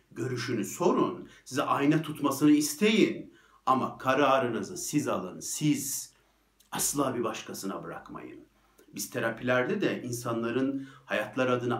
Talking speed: 105 wpm